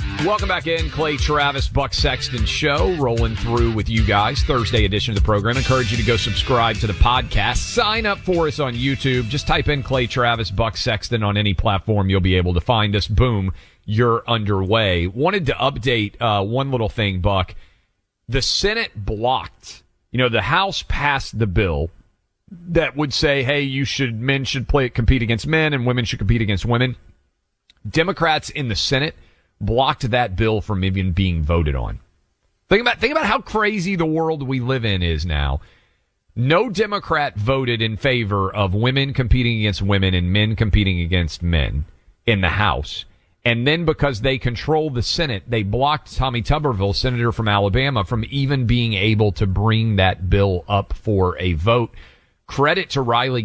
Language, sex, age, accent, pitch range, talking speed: English, male, 40-59, American, 100-135 Hz, 180 wpm